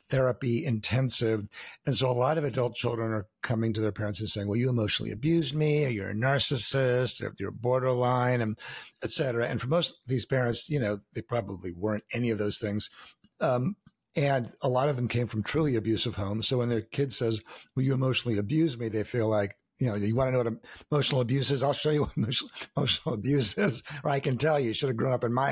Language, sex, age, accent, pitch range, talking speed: English, male, 60-79, American, 110-135 Hz, 235 wpm